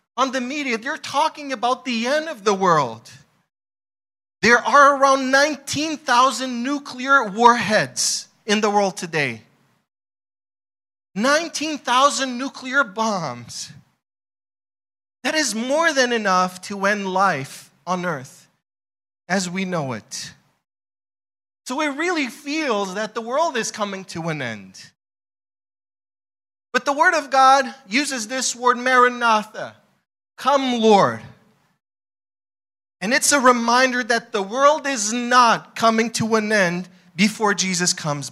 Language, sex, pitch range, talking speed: English, male, 210-280 Hz, 125 wpm